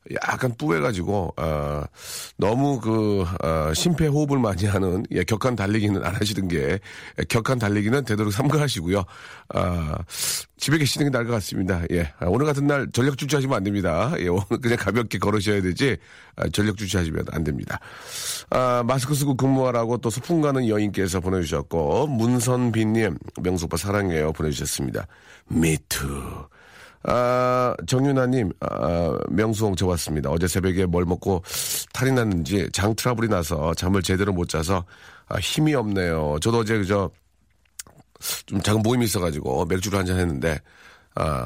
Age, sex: 40-59, male